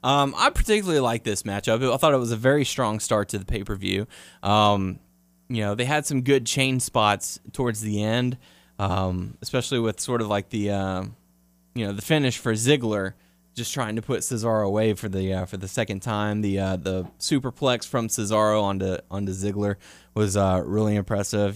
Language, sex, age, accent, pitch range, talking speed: English, male, 20-39, American, 100-130 Hz, 190 wpm